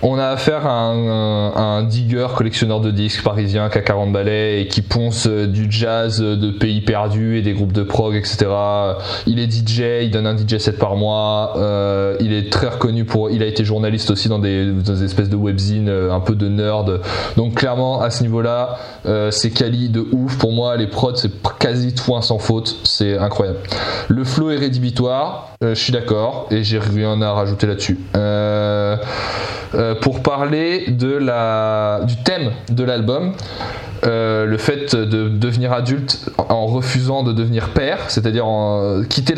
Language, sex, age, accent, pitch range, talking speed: French, male, 20-39, French, 105-125 Hz, 185 wpm